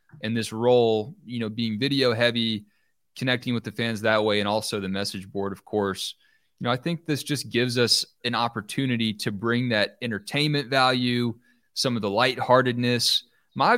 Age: 20-39